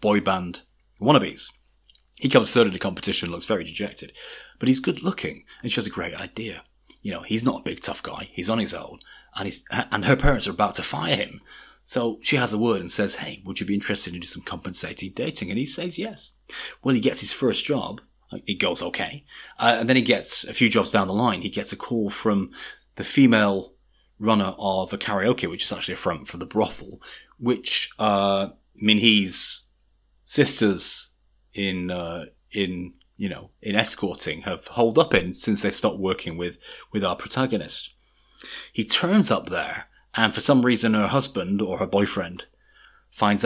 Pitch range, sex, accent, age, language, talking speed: 95-110 Hz, male, British, 30-49, English, 195 wpm